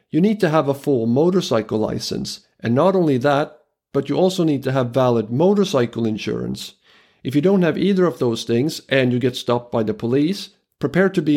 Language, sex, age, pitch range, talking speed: English, male, 50-69, 115-150 Hz, 205 wpm